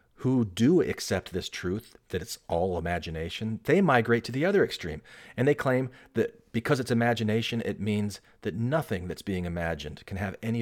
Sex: male